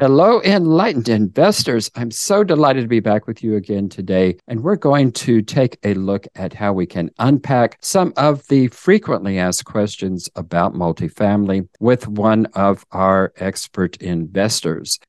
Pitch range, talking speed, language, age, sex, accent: 95-125 Hz, 155 wpm, English, 50-69, male, American